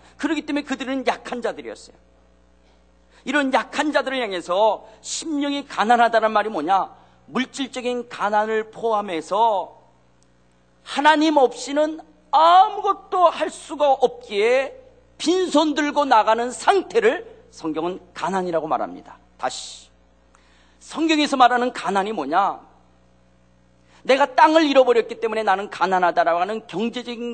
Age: 40-59